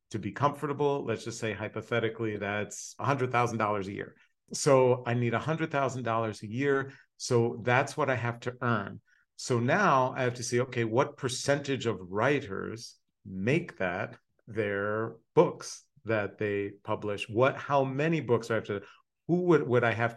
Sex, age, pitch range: male, 50-69, 110-135 Hz